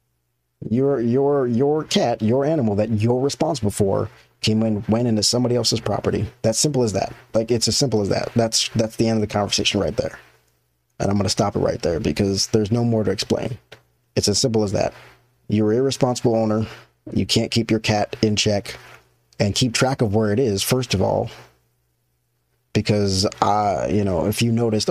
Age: 30-49